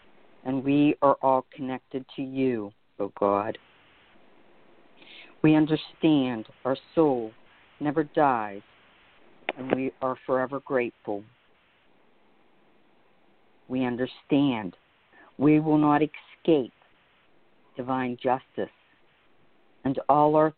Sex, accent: female, American